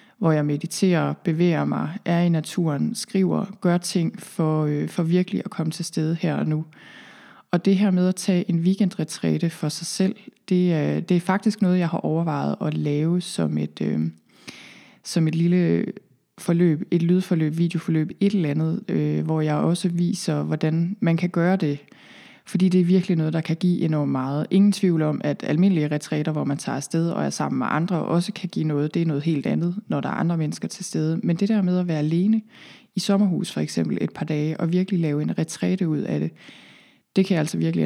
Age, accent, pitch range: 20-39, native, 155-185 Hz